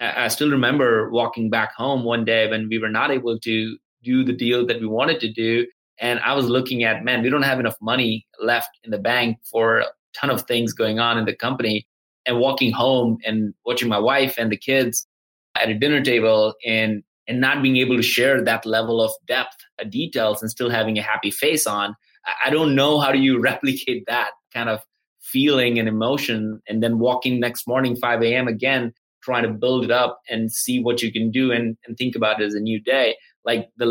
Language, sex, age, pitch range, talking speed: English, male, 20-39, 110-130 Hz, 220 wpm